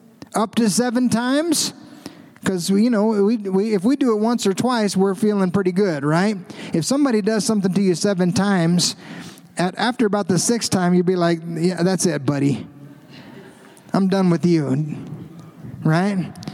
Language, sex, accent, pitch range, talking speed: English, male, American, 175-225 Hz, 170 wpm